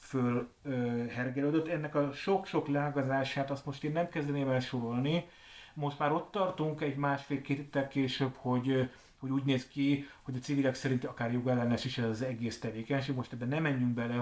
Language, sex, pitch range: Hungarian, male, 125-150 Hz